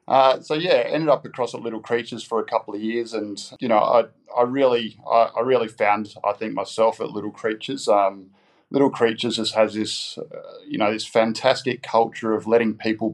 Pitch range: 105-115 Hz